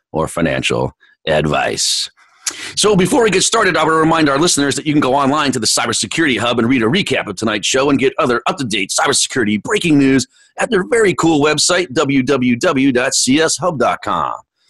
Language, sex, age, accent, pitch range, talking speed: English, male, 30-49, American, 110-160 Hz, 175 wpm